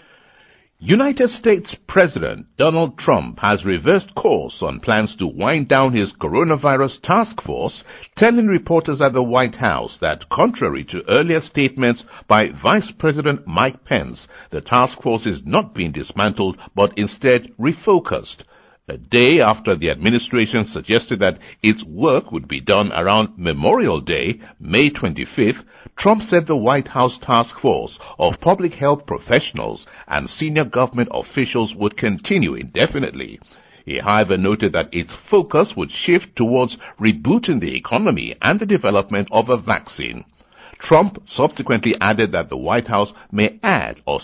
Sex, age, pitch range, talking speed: male, 60-79, 110-165 Hz, 145 wpm